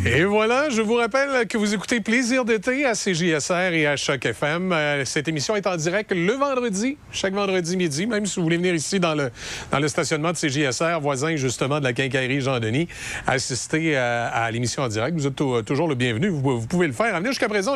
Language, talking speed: French, 220 wpm